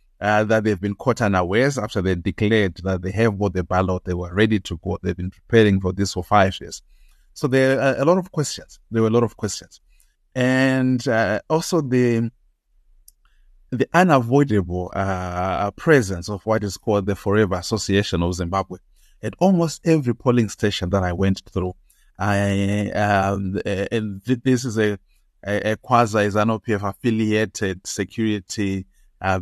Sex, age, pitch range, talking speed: male, 30-49, 95-120 Hz, 165 wpm